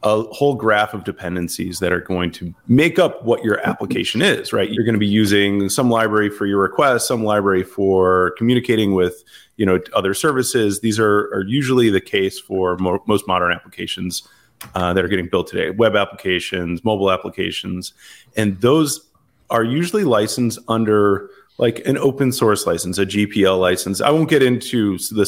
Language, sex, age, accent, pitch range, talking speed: English, male, 30-49, American, 95-115 Hz, 180 wpm